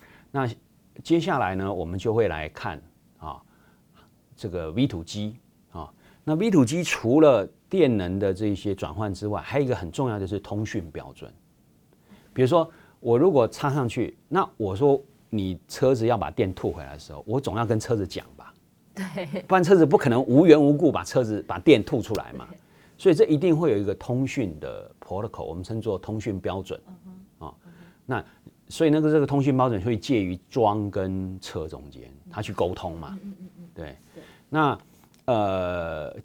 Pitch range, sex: 95-150 Hz, male